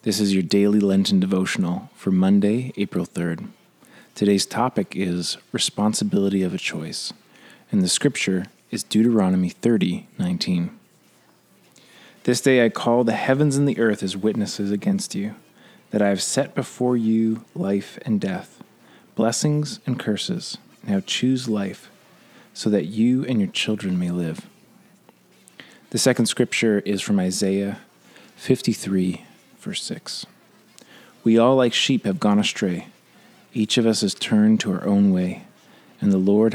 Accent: American